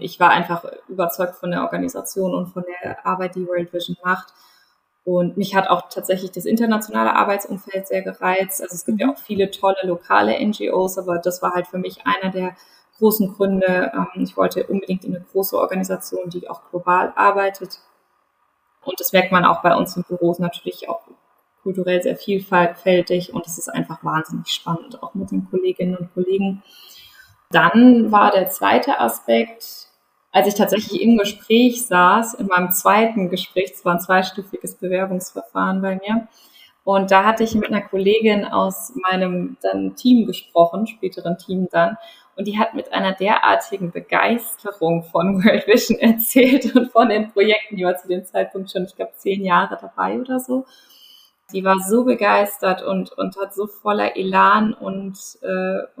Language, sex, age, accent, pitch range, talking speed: German, female, 20-39, German, 180-210 Hz, 170 wpm